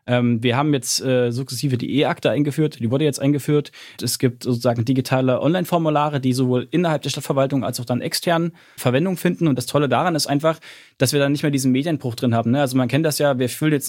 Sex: male